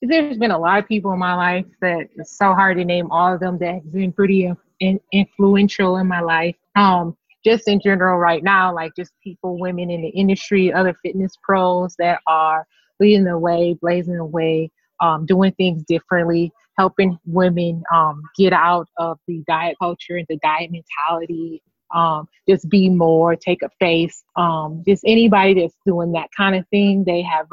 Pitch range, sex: 165-190 Hz, female